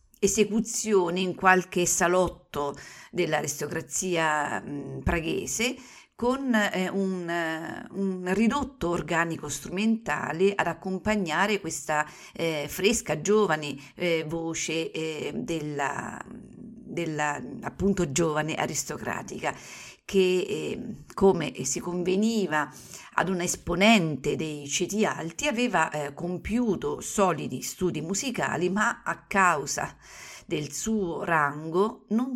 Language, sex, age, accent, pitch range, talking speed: Italian, female, 50-69, native, 155-200 Hz, 90 wpm